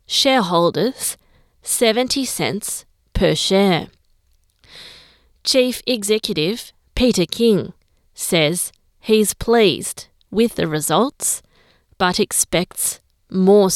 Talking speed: 80 wpm